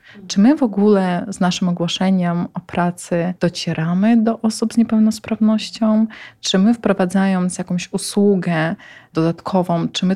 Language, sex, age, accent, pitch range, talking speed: Polish, female, 20-39, native, 180-210 Hz, 130 wpm